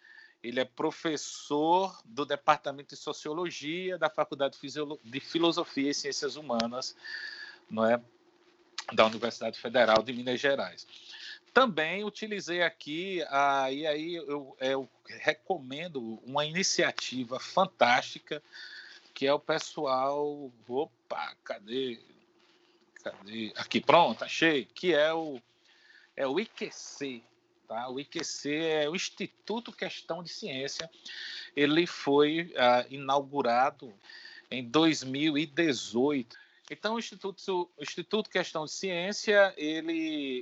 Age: 50-69